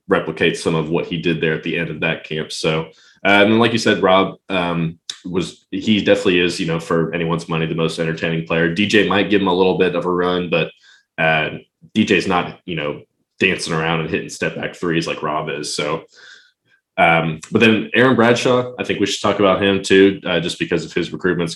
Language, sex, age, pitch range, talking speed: English, male, 20-39, 85-100 Hz, 225 wpm